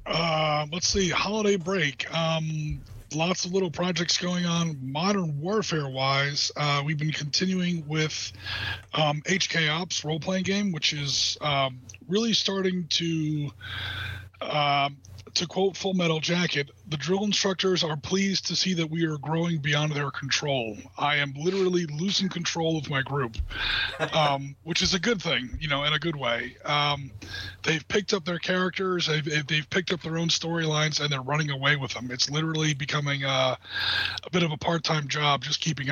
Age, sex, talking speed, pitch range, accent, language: 30-49, male, 170 wpm, 140-175 Hz, American, English